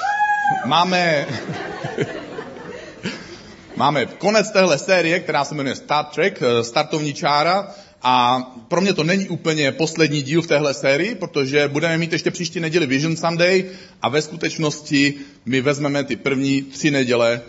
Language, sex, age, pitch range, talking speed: Czech, male, 30-49, 125-165 Hz, 135 wpm